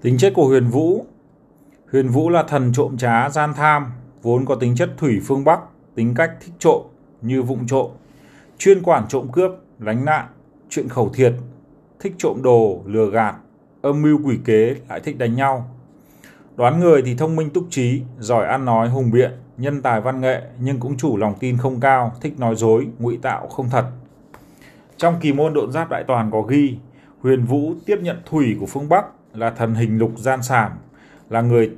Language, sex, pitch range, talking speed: Vietnamese, male, 120-150 Hz, 195 wpm